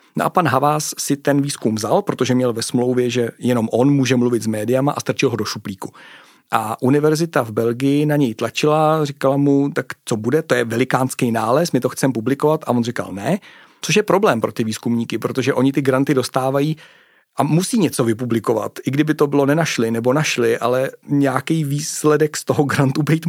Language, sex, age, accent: Czech, male, 40-59, native